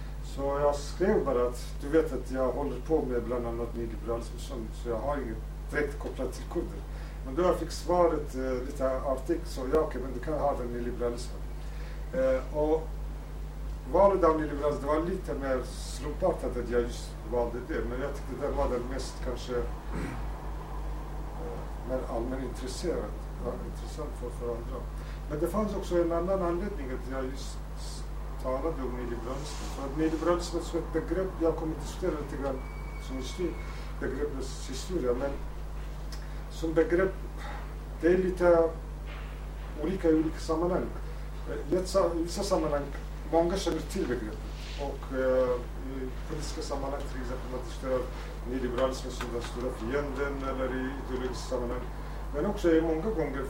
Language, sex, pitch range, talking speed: Swedish, male, 130-160 Hz, 150 wpm